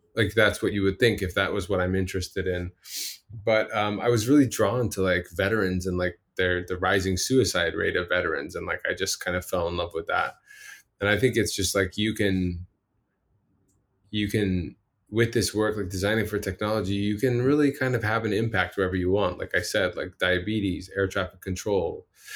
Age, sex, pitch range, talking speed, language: 20-39, male, 90-110 Hz, 210 wpm, English